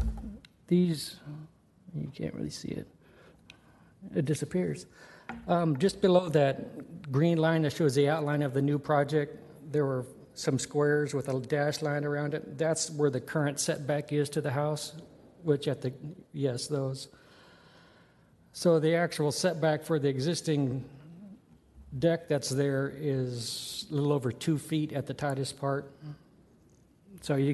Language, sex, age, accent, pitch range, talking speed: English, male, 60-79, American, 130-155 Hz, 150 wpm